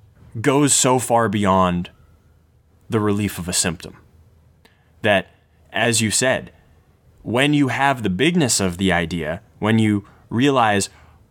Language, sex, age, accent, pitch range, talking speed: English, male, 20-39, American, 95-125 Hz, 125 wpm